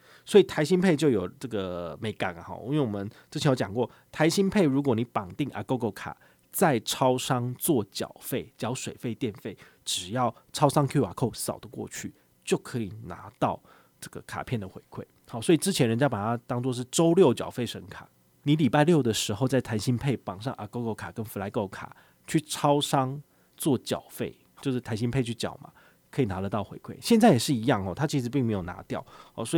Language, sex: Chinese, male